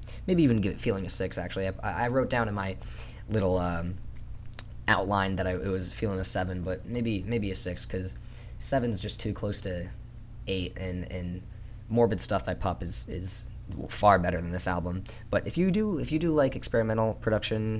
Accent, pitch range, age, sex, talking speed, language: American, 95-115 Hz, 10-29, male, 200 wpm, English